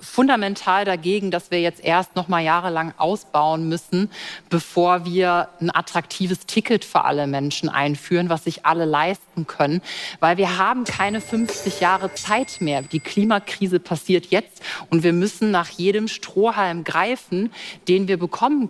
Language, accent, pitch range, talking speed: German, German, 160-195 Hz, 150 wpm